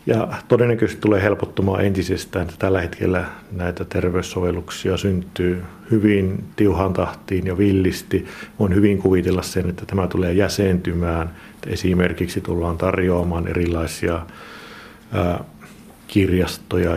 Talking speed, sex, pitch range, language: 105 wpm, male, 90-100 Hz, Finnish